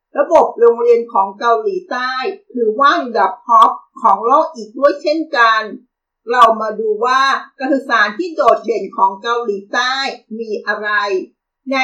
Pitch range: 225-300 Hz